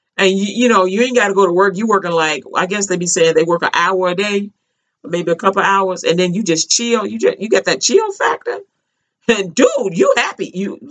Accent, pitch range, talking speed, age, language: American, 180-250 Hz, 270 wpm, 40-59, English